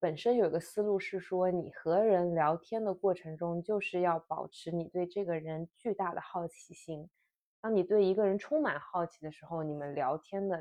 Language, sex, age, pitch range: Chinese, female, 20-39, 165-215 Hz